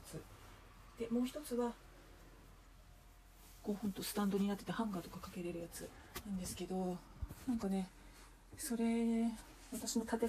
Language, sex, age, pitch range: Japanese, female, 40-59, 170-225 Hz